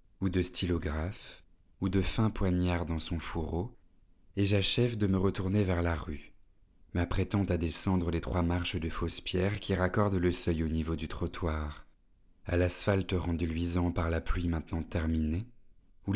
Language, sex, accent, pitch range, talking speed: French, male, French, 85-95 Hz, 165 wpm